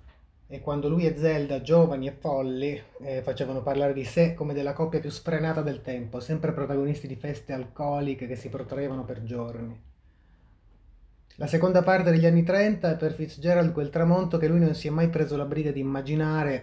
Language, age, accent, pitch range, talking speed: Italian, 30-49, native, 125-150 Hz, 190 wpm